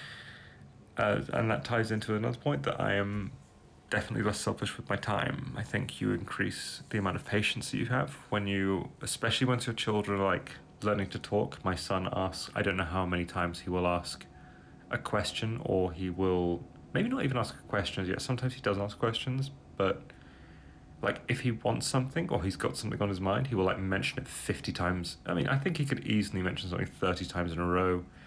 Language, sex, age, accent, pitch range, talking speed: Polish, male, 30-49, British, 90-120 Hz, 215 wpm